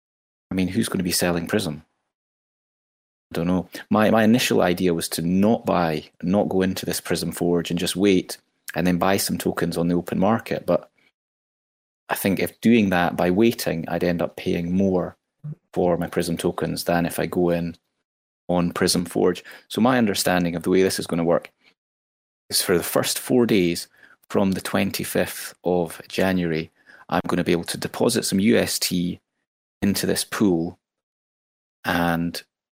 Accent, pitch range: British, 85-95 Hz